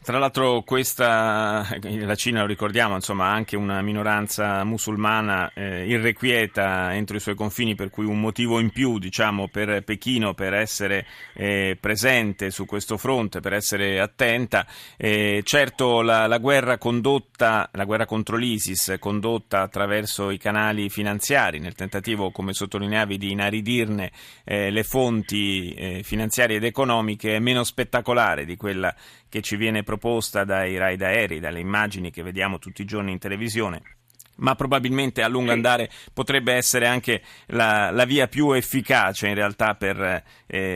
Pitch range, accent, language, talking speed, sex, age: 100-125 Hz, native, Italian, 150 wpm, male, 30-49